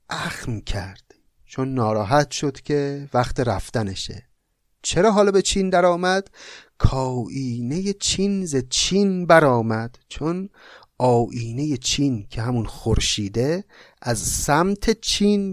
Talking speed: 110 wpm